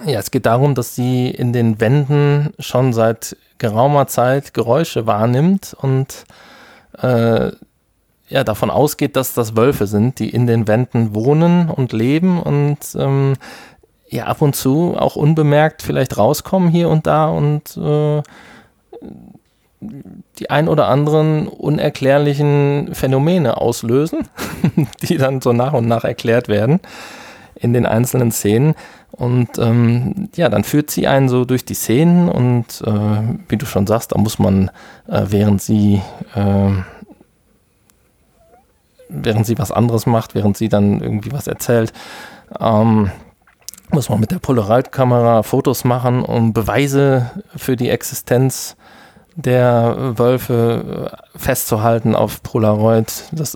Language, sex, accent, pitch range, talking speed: German, male, German, 110-145 Hz, 135 wpm